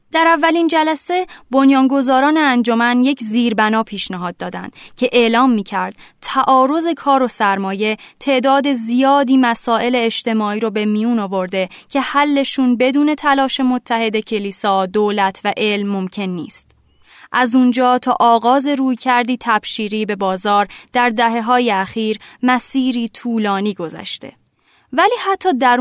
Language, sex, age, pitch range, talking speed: Persian, female, 20-39, 215-270 Hz, 125 wpm